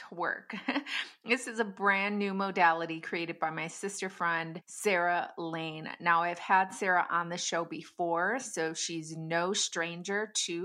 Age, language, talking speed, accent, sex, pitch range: 20-39, English, 150 wpm, American, female, 170-195 Hz